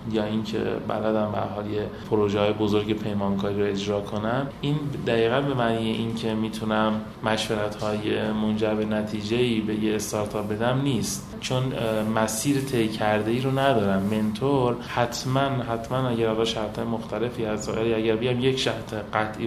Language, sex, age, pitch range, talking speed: Persian, male, 30-49, 105-120 Hz, 150 wpm